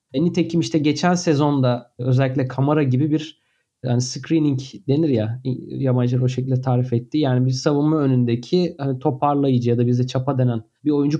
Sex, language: male, Turkish